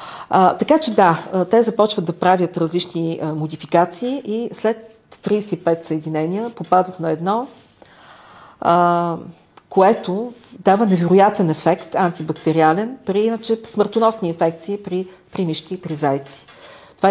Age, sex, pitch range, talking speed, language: 50-69, female, 160-205 Hz, 115 wpm, Bulgarian